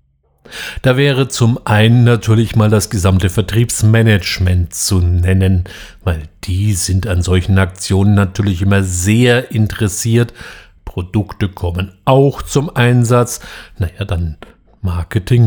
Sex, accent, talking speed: male, German, 115 wpm